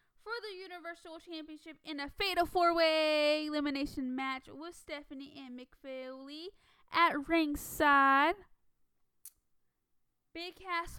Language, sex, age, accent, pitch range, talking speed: English, female, 10-29, American, 275-335 Hz, 105 wpm